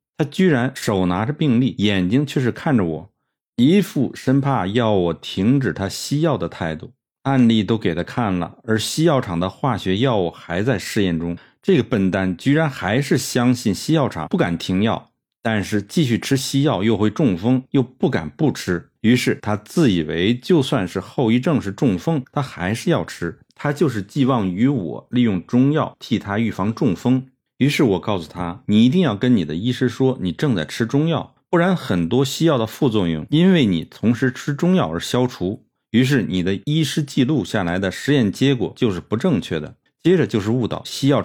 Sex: male